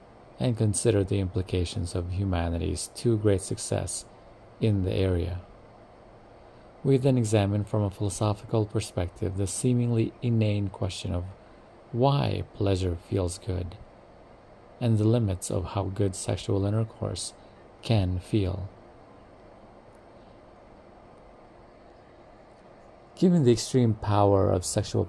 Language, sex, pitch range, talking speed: English, male, 95-110 Hz, 105 wpm